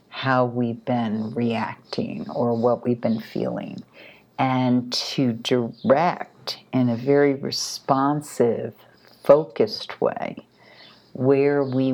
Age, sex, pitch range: 50-69, female, 115-130 Hz